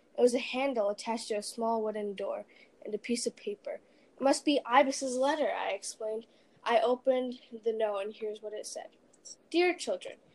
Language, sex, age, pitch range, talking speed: English, female, 10-29, 210-265 Hz, 190 wpm